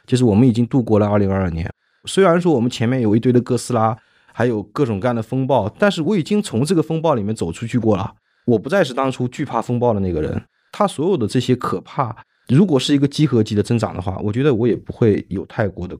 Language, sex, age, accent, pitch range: Chinese, male, 20-39, native, 95-130 Hz